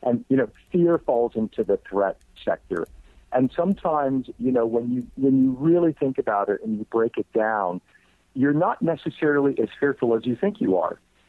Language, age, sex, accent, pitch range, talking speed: English, 50-69, male, American, 105-135 Hz, 190 wpm